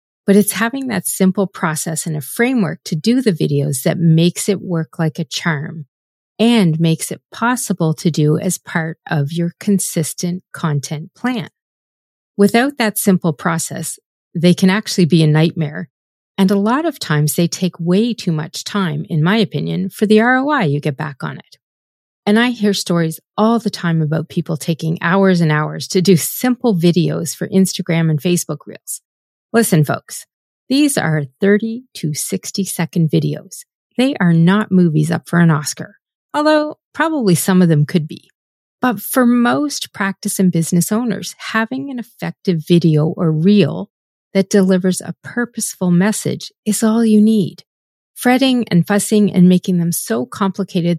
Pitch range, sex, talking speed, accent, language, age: 160-210 Hz, female, 165 wpm, American, English, 40-59